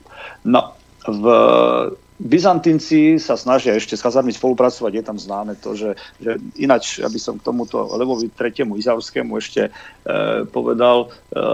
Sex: male